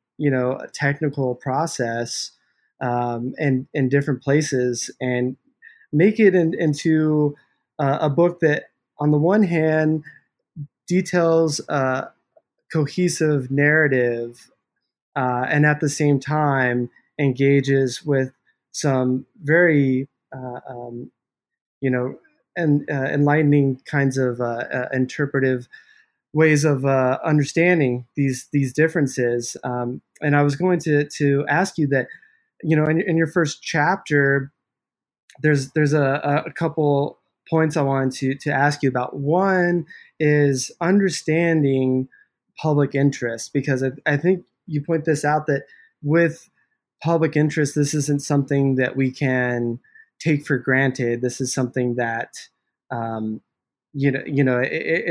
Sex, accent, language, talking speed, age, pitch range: male, American, English, 135 wpm, 20-39, 130-155 Hz